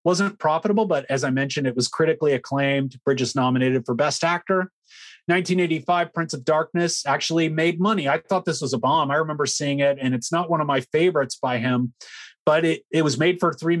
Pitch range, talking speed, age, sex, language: 135-175 Hz, 210 wpm, 30-49, male, English